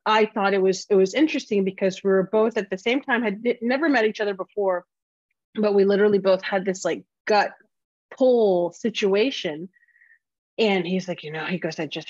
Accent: American